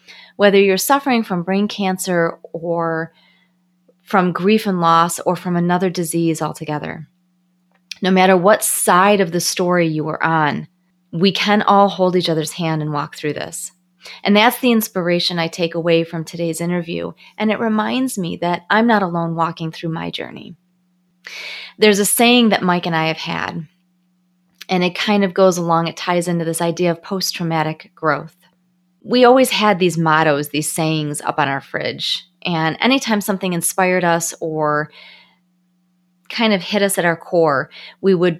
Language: English